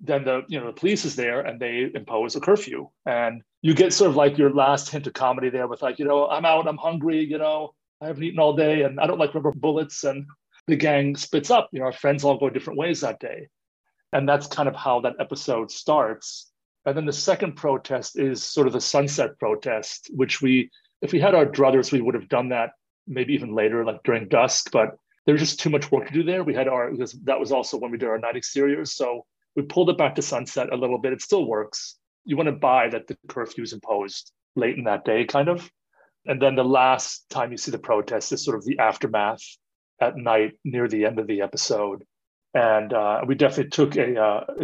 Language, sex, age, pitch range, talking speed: English, male, 40-59, 125-150 Hz, 240 wpm